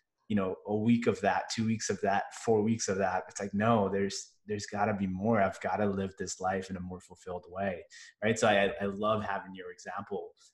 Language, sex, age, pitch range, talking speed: English, male, 20-39, 100-115 Hz, 245 wpm